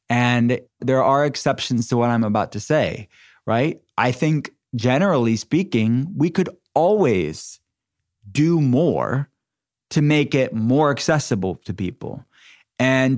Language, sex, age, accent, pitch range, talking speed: English, male, 20-39, American, 115-155 Hz, 125 wpm